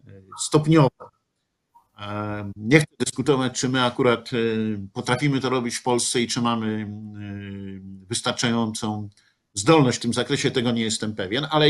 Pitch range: 120-175 Hz